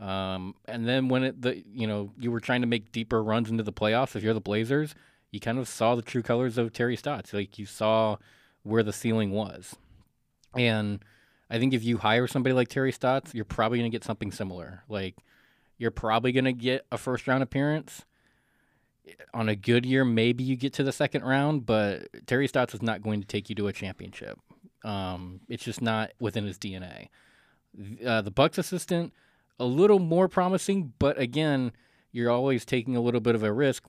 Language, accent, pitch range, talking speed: English, American, 105-125 Hz, 205 wpm